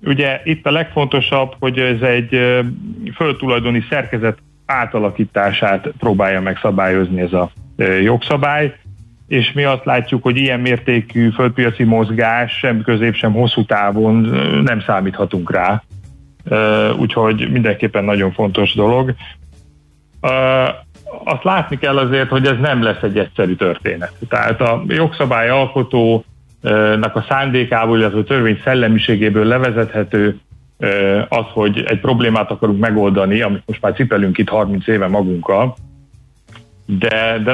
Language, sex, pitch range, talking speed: Hungarian, male, 105-125 Hz, 120 wpm